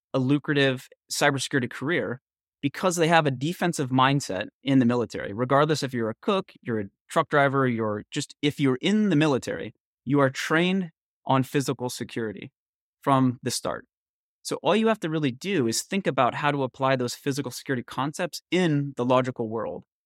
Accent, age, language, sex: American, 30-49, English, male